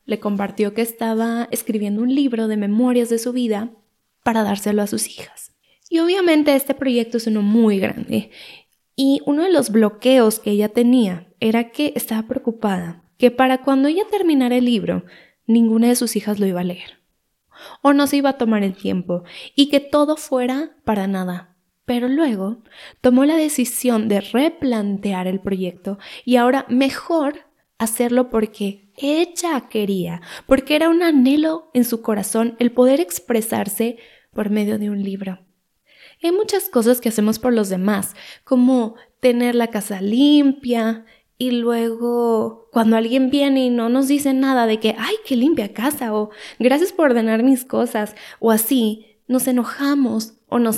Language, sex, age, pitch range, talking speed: Spanish, female, 10-29, 215-265 Hz, 165 wpm